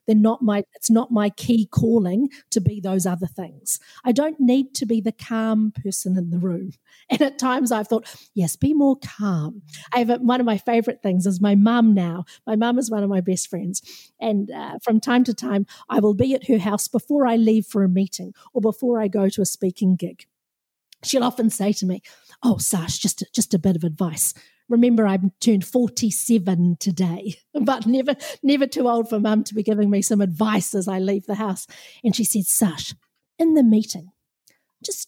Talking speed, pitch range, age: 210 wpm, 195-255 Hz, 50-69